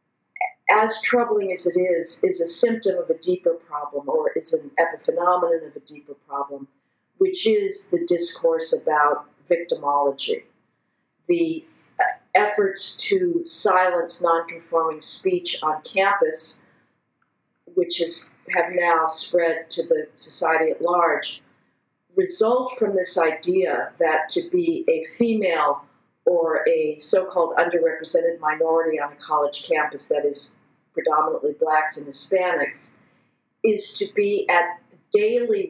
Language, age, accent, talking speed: English, 50-69, American, 125 wpm